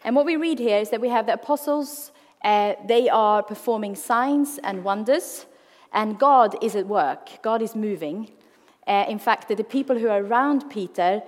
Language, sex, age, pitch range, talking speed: English, female, 30-49, 195-245 Hz, 185 wpm